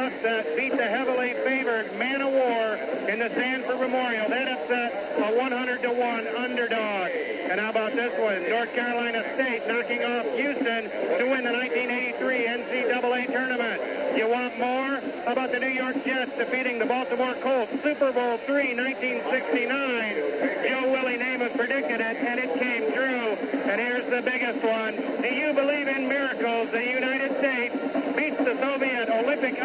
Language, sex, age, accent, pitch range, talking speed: English, male, 50-69, American, 235-265 Hz, 165 wpm